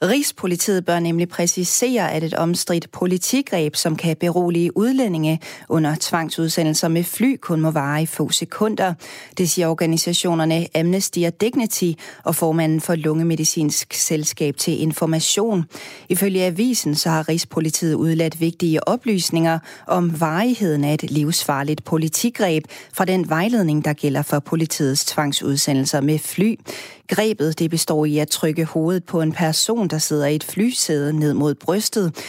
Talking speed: 140 wpm